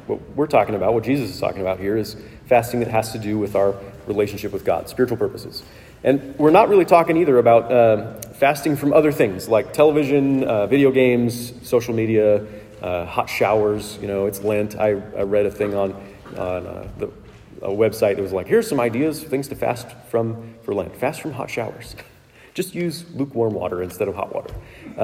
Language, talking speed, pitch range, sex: English, 200 wpm, 105-145 Hz, male